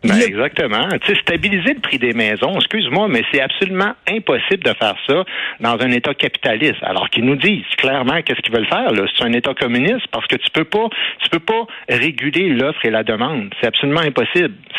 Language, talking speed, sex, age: French, 200 wpm, male, 60-79